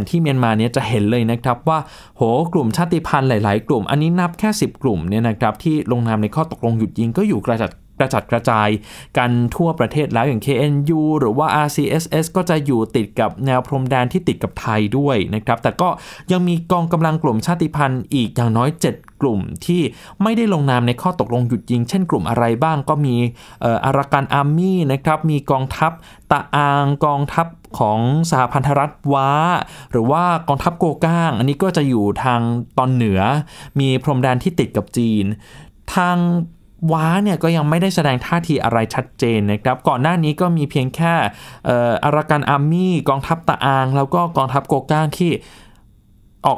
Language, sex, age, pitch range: Thai, male, 20-39, 120-160 Hz